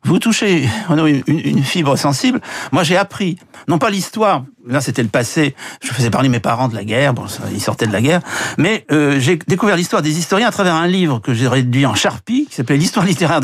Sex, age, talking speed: male, 60-79, 220 wpm